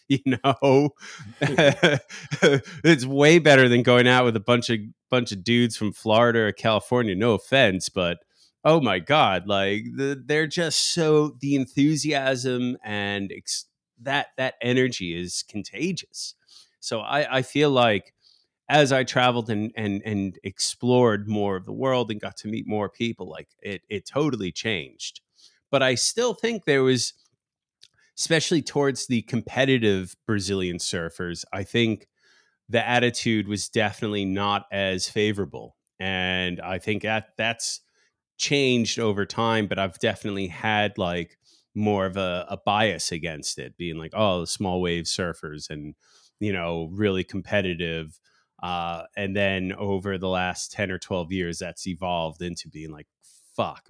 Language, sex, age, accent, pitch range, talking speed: English, male, 30-49, American, 95-130 Hz, 150 wpm